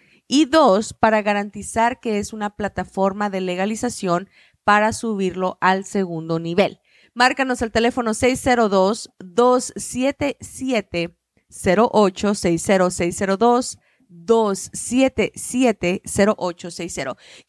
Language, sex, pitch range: Spanish, female, 195-245 Hz